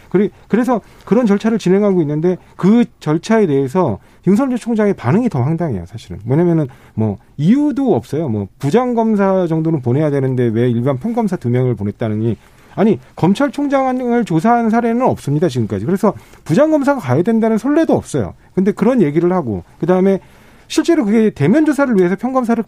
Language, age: Korean, 40-59